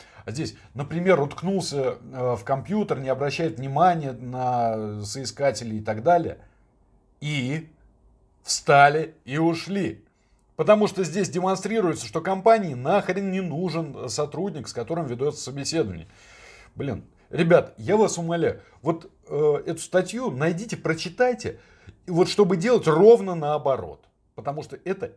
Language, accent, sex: Russian, native, male